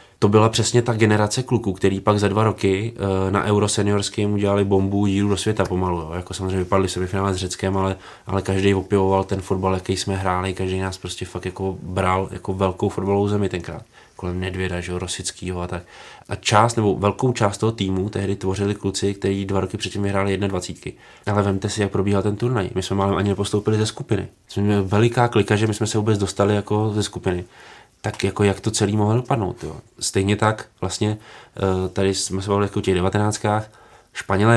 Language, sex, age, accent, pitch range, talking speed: Czech, male, 20-39, native, 95-105 Hz, 195 wpm